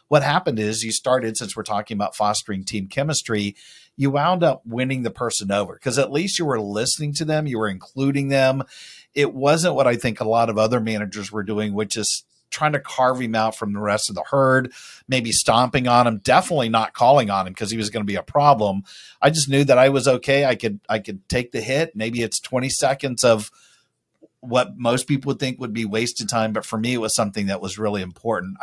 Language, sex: English, male